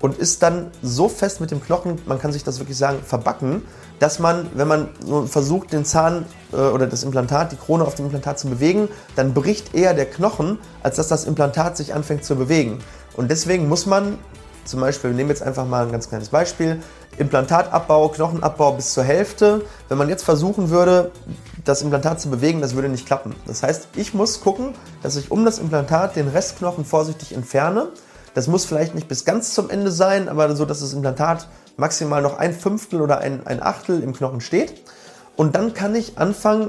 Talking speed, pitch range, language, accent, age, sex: 200 wpm, 140-180 Hz, German, German, 30-49, male